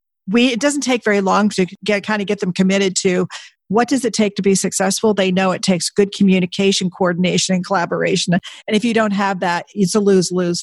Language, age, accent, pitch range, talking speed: English, 50-69, American, 185-220 Hz, 220 wpm